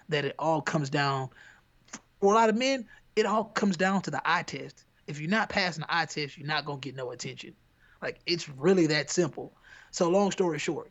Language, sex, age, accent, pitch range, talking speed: English, male, 20-39, American, 145-185 Hz, 225 wpm